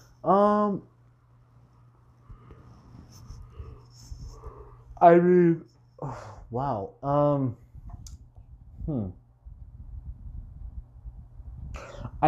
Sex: male